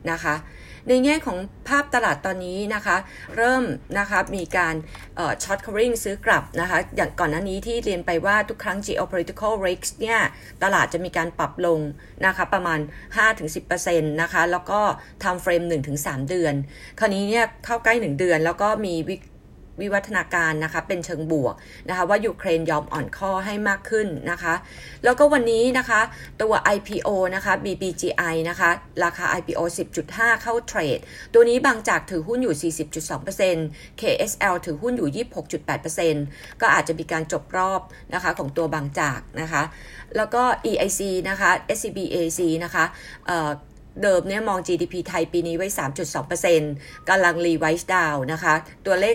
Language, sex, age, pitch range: Thai, female, 20-39, 160-205 Hz